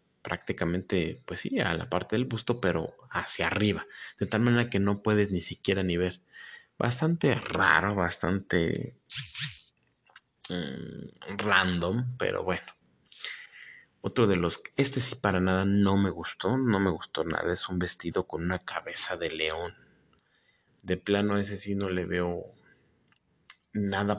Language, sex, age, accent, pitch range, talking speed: Spanish, male, 30-49, Mexican, 90-105 Hz, 145 wpm